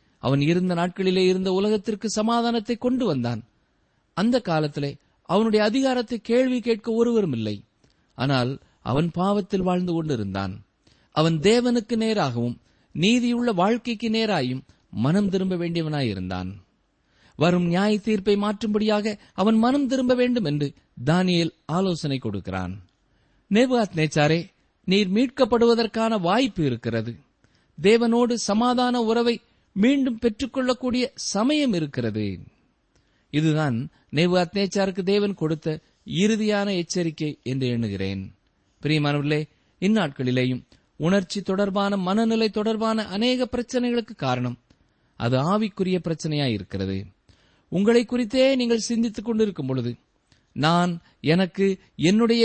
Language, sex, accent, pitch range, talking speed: Tamil, male, native, 140-225 Hz, 90 wpm